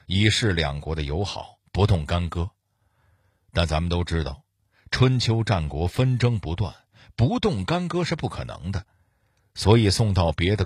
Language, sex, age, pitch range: Chinese, male, 50-69, 85-120 Hz